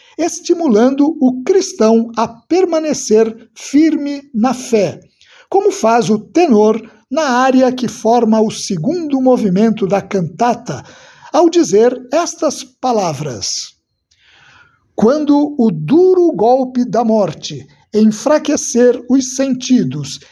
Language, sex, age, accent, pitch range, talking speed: Portuguese, male, 60-79, Brazilian, 205-285 Hz, 100 wpm